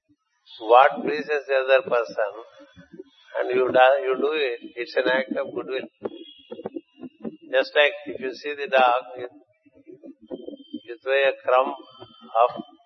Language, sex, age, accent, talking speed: Telugu, male, 50-69, native, 135 wpm